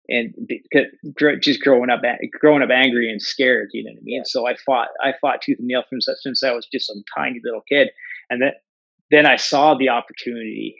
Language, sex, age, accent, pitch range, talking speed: English, male, 30-49, American, 110-150 Hz, 210 wpm